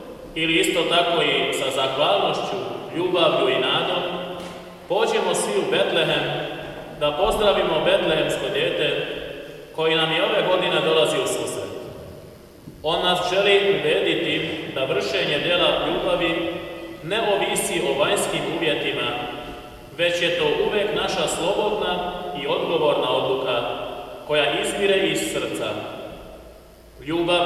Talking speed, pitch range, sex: 115 wpm, 155-205 Hz, male